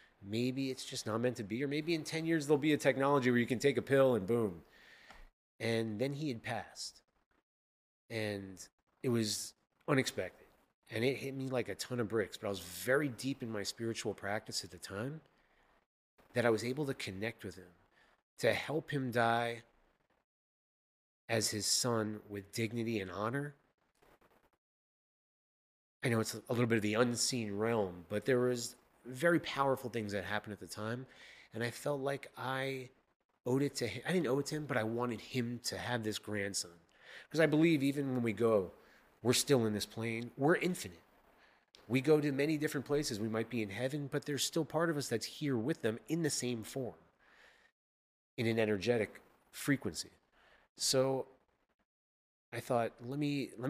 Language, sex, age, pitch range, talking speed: English, male, 30-49, 110-135 Hz, 185 wpm